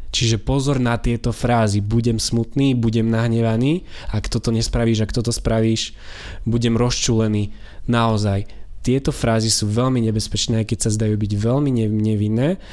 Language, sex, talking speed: Slovak, male, 145 wpm